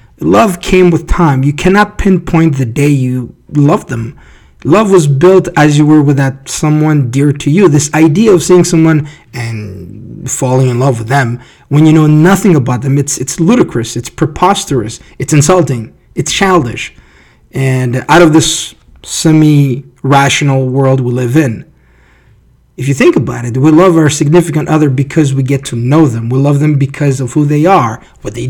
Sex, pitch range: male, 130-160 Hz